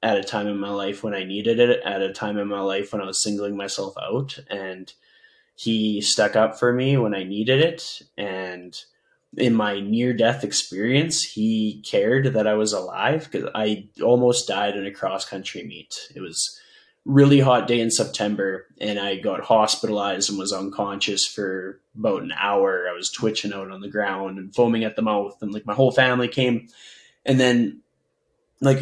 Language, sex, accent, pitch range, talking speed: English, male, American, 100-120 Hz, 190 wpm